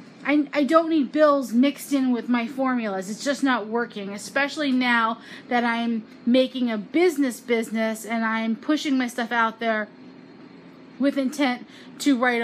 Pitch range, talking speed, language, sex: 235-290 Hz, 155 wpm, English, female